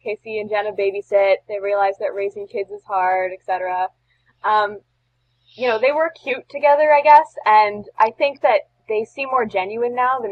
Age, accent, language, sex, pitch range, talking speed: 10-29, American, English, female, 175-215 Hz, 180 wpm